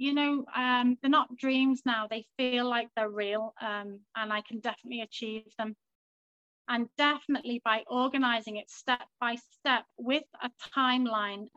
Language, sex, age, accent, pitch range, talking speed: English, female, 30-49, British, 220-250 Hz, 155 wpm